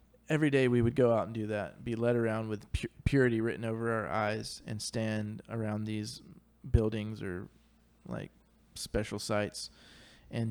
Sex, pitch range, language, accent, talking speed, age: male, 110-130 Hz, English, American, 160 wpm, 20-39